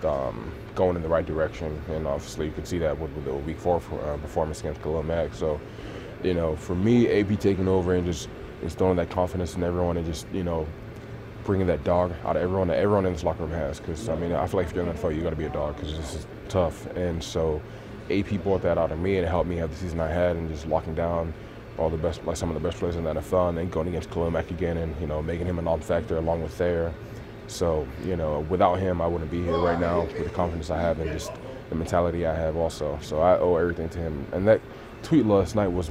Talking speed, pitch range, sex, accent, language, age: 265 wpm, 80-95 Hz, male, American, English, 20-39